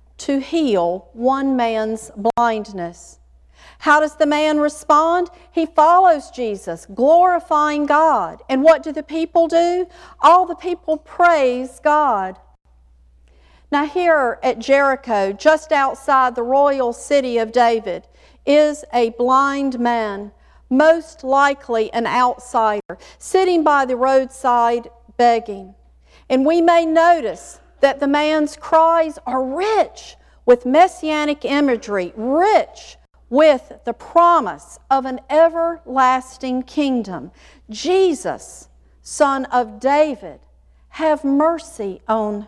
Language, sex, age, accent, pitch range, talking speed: English, female, 50-69, American, 235-305 Hz, 110 wpm